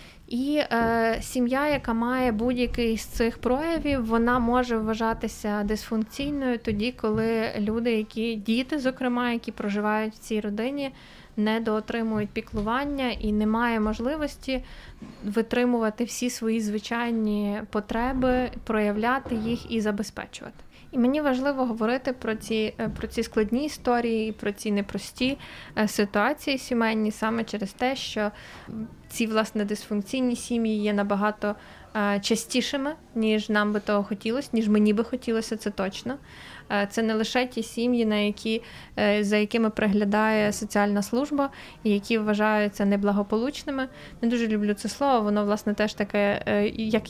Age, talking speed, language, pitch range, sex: 20-39, 130 wpm, Ukrainian, 210-245 Hz, female